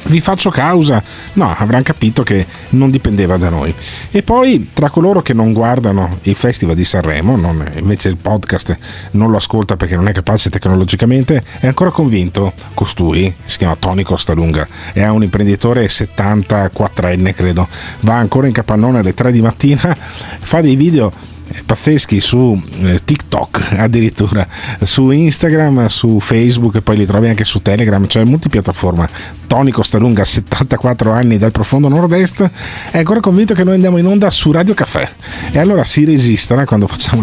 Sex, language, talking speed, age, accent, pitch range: male, Italian, 160 wpm, 40-59, native, 95-130 Hz